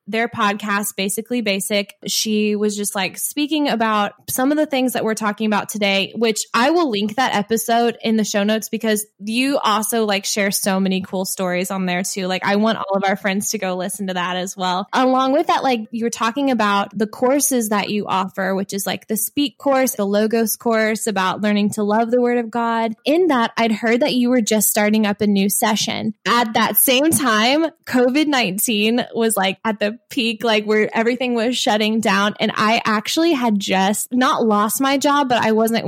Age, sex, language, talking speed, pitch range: 10-29, female, English, 210 wpm, 210-255 Hz